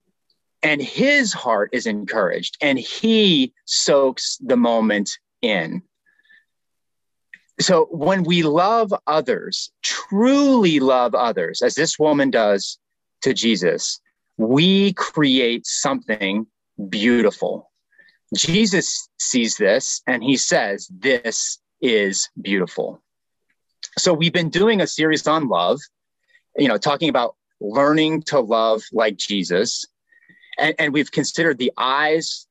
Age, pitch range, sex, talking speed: 30-49, 140-225 Hz, male, 115 wpm